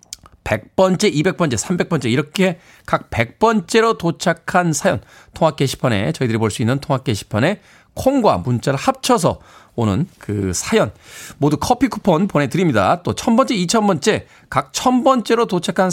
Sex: male